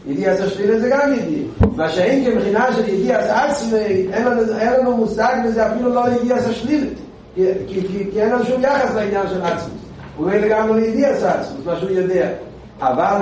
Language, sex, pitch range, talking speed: Hebrew, male, 195-245 Hz, 165 wpm